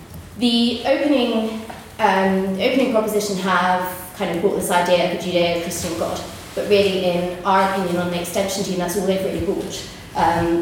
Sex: female